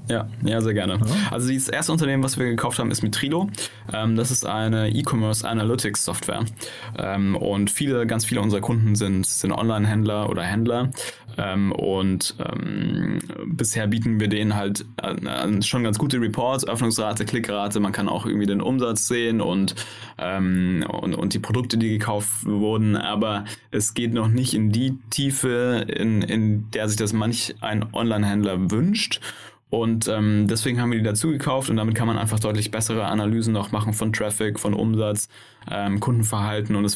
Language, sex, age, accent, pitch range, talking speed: German, male, 20-39, German, 105-120 Hz, 160 wpm